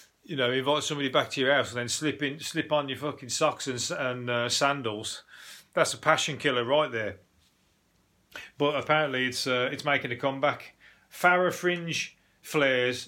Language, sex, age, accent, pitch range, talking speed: English, male, 30-49, British, 125-155 Hz, 175 wpm